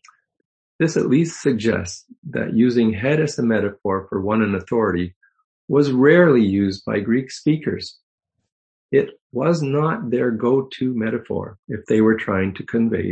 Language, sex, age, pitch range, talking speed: English, male, 50-69, 100-135 Hz, 145 wpm